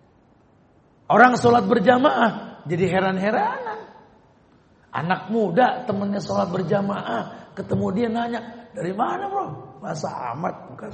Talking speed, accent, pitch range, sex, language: 105 wpm, native, 150-220 Hz, male, Indonesian